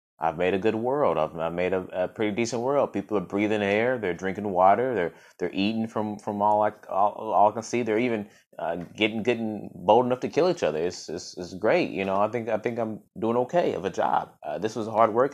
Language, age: English, 20-39